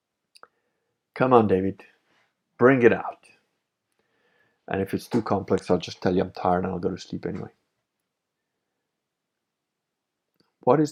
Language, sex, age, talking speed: English, male, 50-69, 135 wpm